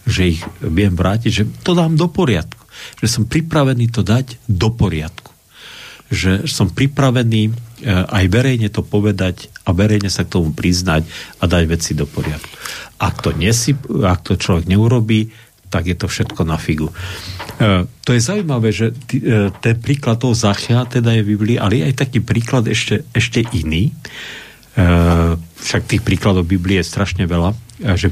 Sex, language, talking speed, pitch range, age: male, Slovak, 155 wpm, 90-120 Hz, 50-69